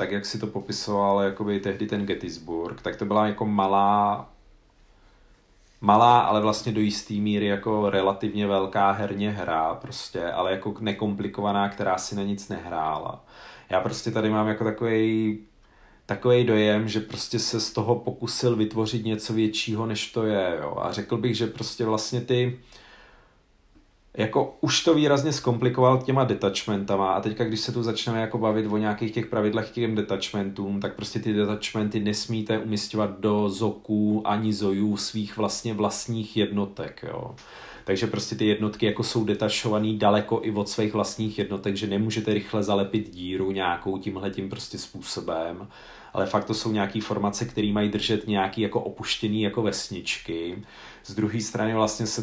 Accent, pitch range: native, 100-115 Hz